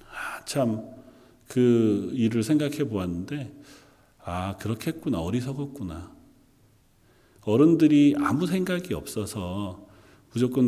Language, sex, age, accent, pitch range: Korean, male, 40-59, native, 100-130 Hz